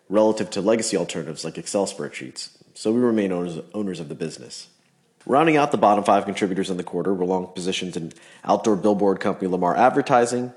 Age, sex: 30-49, male